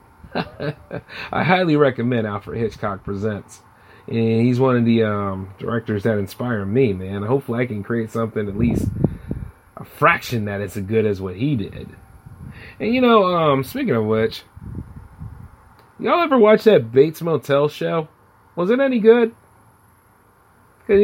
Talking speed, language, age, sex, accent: 150 wpm, English, 30-49, male, American